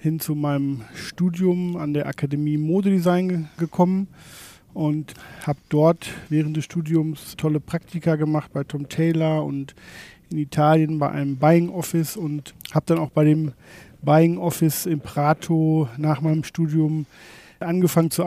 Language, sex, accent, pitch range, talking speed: German, male, German, 150-170 Hz, 145 wpm